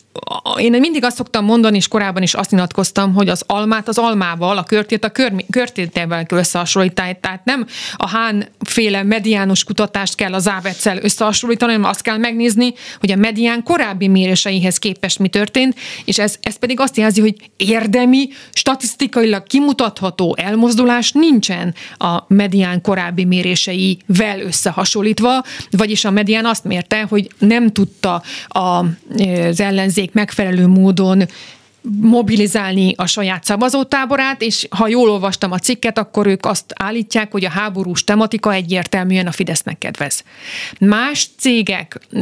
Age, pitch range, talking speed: 30-49, 190-230 Hz, 140 wpm